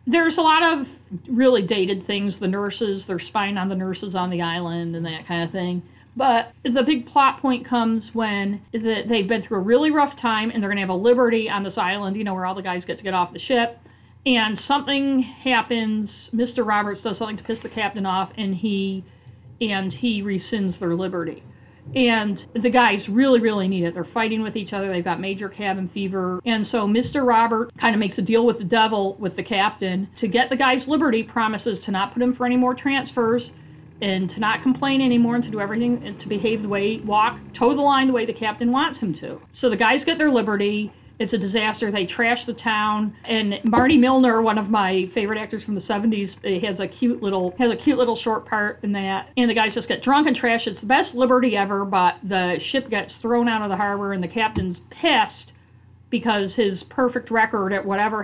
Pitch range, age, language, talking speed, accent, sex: 195-240 Hz, 40-59, English, 225 wpm, American, female